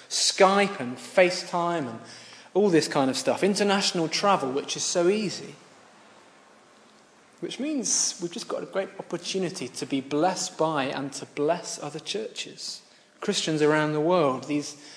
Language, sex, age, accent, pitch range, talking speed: English, male, 20-39, British, 135-180 Hz, 145 wpm